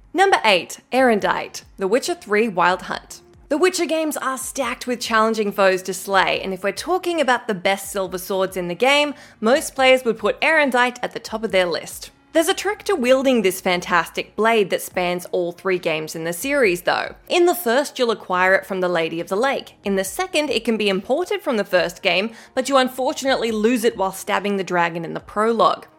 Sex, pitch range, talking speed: female, 195-280 Hz, 215 wpm